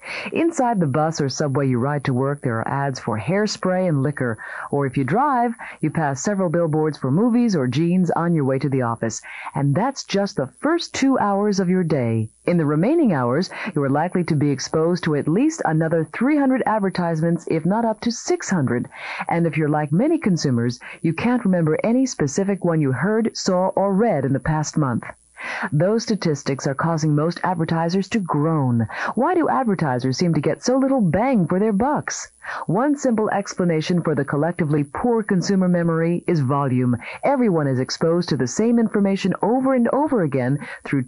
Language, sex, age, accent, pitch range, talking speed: English, female, 40-59, American, 145-215 Hz, 190 wpm